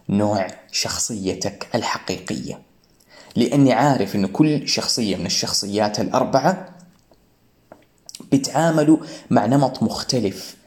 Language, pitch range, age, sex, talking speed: Arabic, 110-140 Hz, 20-39, male, 85 wpm